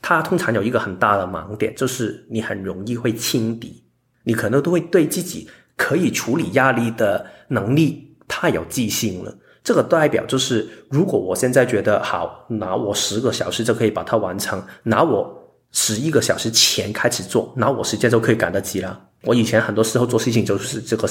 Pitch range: 110-140 Hz